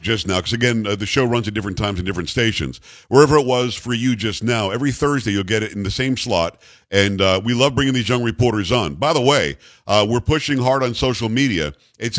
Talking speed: 245 wpm